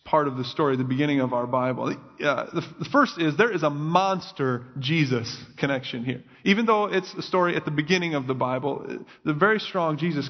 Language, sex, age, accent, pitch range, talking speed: English, male, 30-49, American, 150-195 Hz, 210 wpm